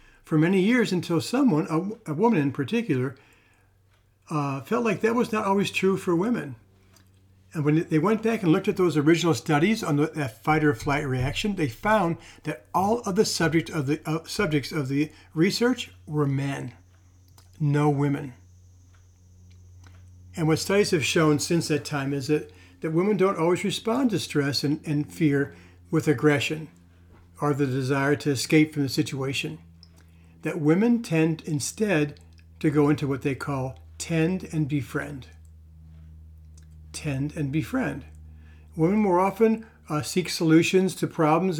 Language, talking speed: English, 155 wpm